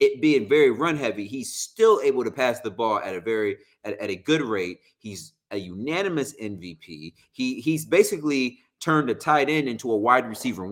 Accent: American